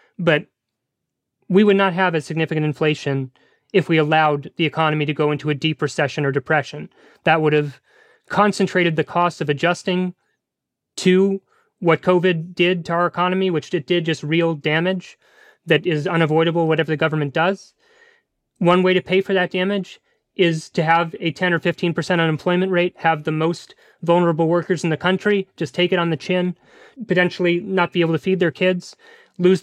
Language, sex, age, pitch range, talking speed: English, male, 30-49, 160-190 Hz, 180 wpm